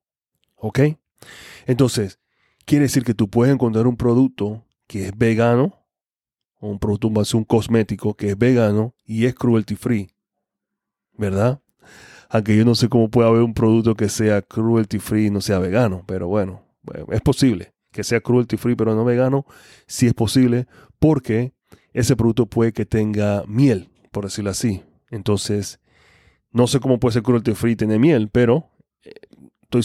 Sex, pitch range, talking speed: male, 105-120 Hz, 160 wpm